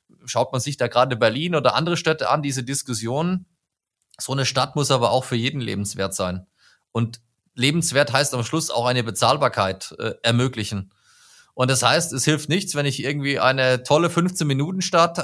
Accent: German